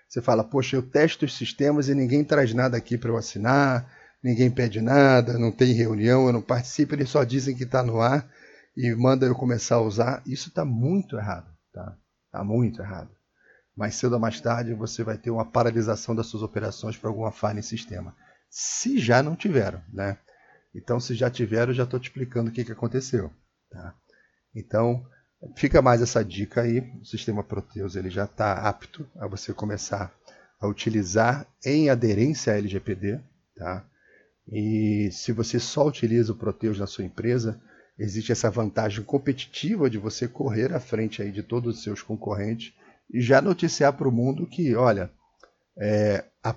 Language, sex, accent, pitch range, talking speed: Portuguese, male, Brazilian, 110-130 Hz, 180 wpm